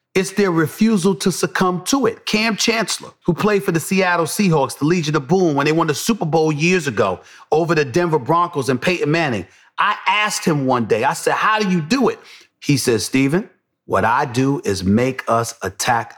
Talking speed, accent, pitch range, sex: 210 wpm, American, 155-235 Hz, male